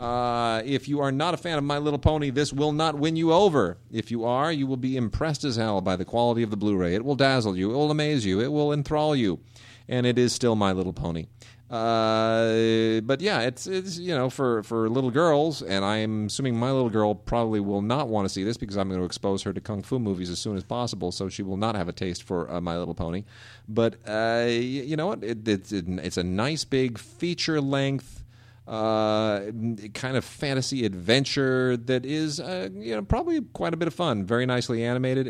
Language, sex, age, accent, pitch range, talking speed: English, male, 40-59, American, 105-135 Hz, 225 wpm